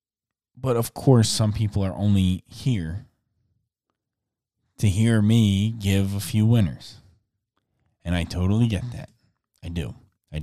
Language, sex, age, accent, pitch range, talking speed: English, male, 20-39, American, 95-115 Hz, 130 wpm